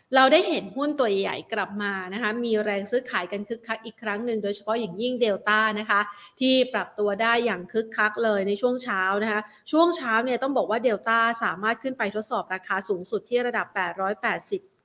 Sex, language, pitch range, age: female, Thai, 205-245 Hz, 30-49